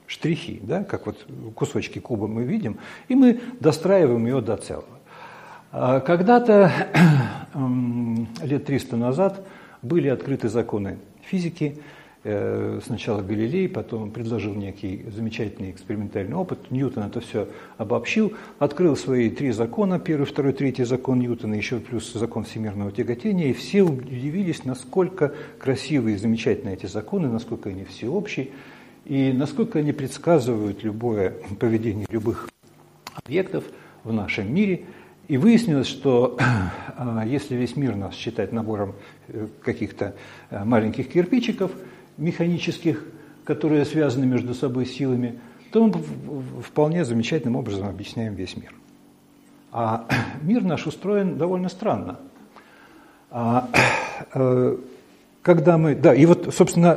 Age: 60-79